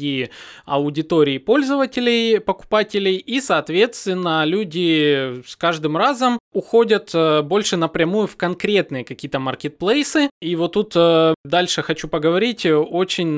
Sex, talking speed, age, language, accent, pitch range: male, 105 wpm, 20-39, Russian, native, 150-210 Hz